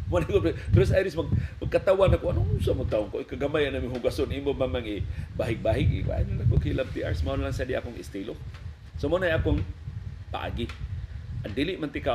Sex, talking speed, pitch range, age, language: male, 210 wpm, 95-115 Hz, 40-59, Filipino